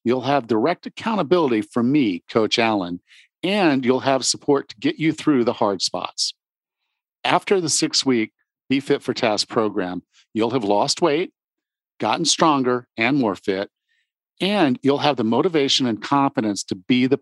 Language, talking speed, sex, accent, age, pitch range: English, 160 wpm, male, American, 50-69, 115-150 Hz